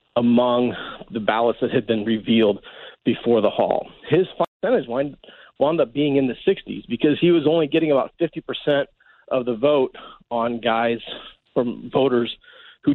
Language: English